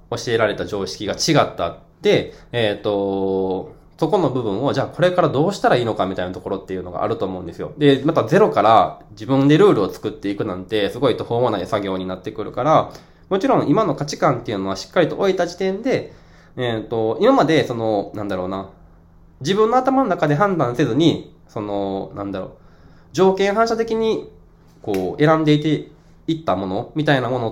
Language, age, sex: Japanese, 20-39, male